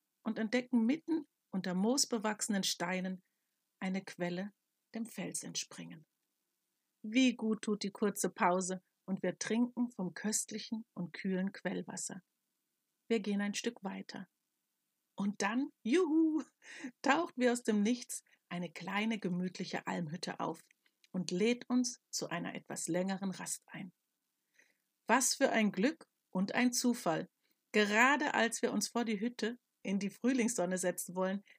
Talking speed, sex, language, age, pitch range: 135 wpm, female, German, 50-69, 190-245 Hz